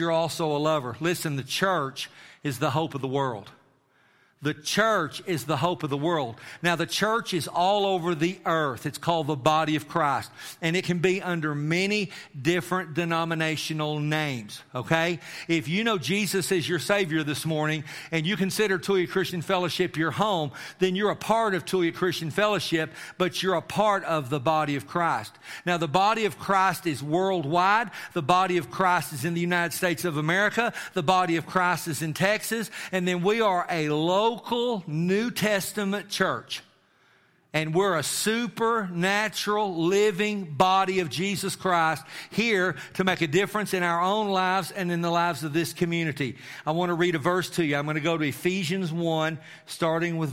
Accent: American